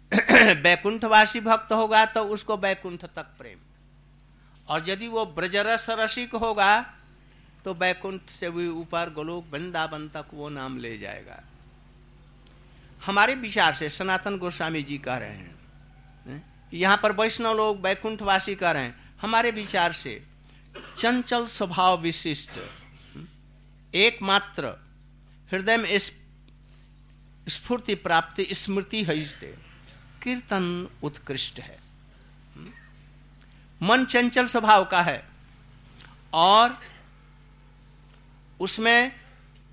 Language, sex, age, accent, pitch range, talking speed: Hindi, male, 60-79, native, 140-220 Hz, 100 wpm